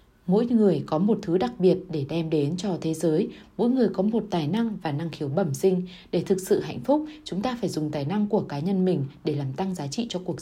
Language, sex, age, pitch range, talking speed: Vietnamese, female, 20-39, 155-205 Hz, 265 wpm